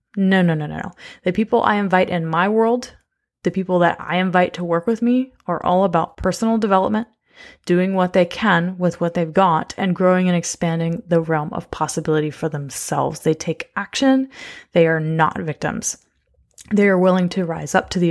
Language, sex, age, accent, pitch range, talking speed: English, female, 20-39, American, 170-205 Hz, 195 wpm